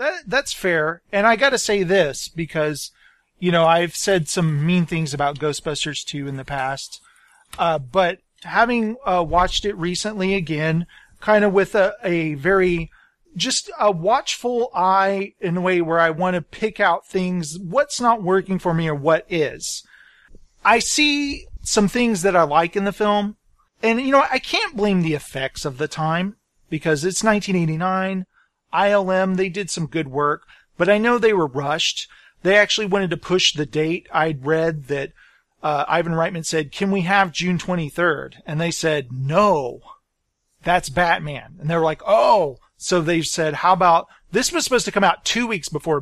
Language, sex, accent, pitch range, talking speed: English, male, American, 160-205 Hz, 180 wpm